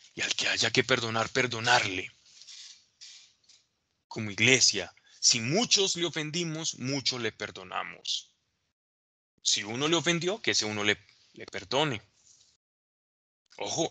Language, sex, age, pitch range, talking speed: Spanish, male, 20-39, 110-140 Hz, 115 wpm